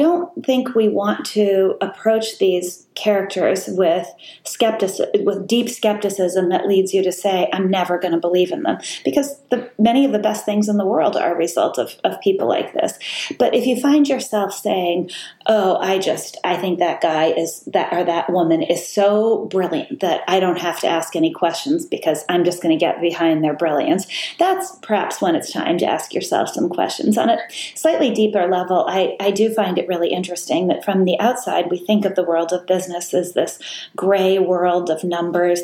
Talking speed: 200 wpm